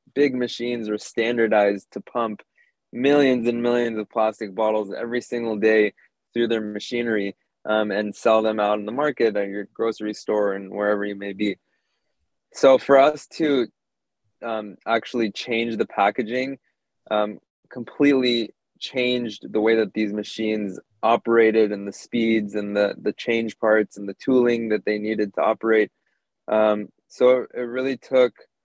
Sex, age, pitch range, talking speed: male, 20-39, 110-120 Hz, 155 wpm